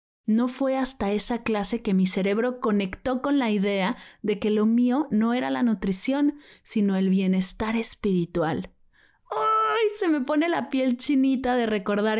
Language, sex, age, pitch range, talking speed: Spanish, female, 30-49, 195-250 Hz, 160 wpm